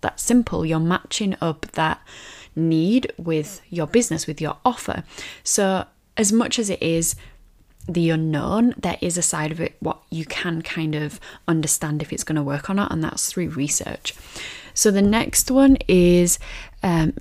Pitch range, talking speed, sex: 155-195 Hz, 175 wpm, female